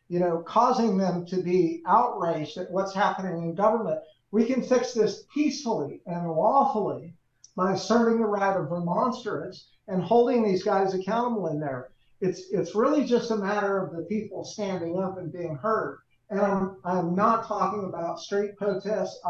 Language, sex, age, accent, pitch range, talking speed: English, male, 50-69, American, 175-210 Hz, 170 wpm